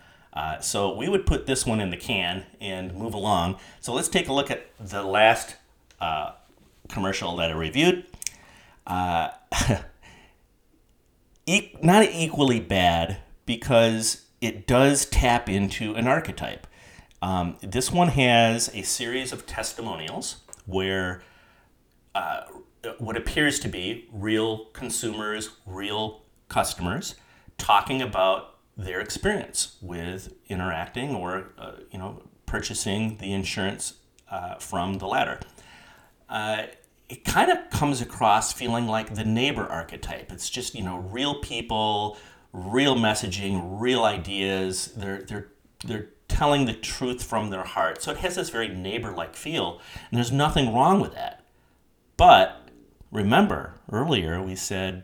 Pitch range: 95-120 Hz